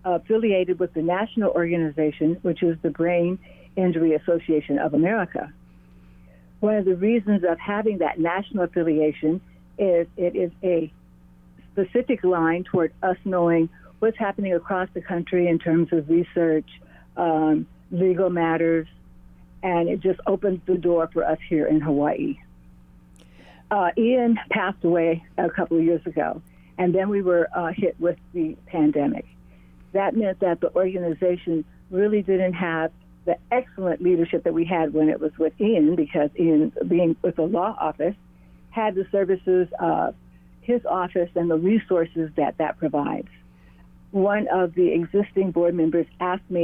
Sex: female